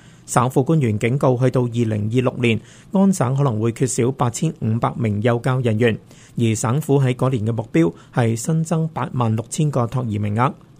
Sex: male